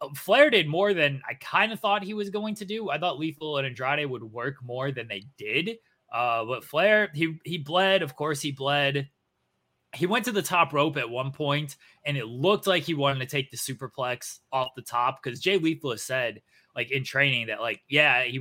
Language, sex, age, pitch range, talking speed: English, male, 20-39, 125-155 Hz, 220 wpm